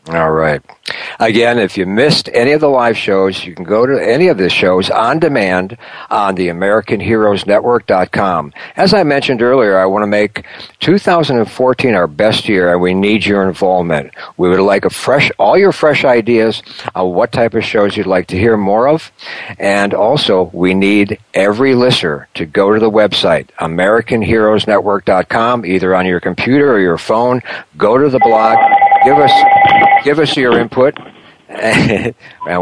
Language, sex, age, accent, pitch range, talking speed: English, male, 60-79, American, 100-125 Hz, 165 wpm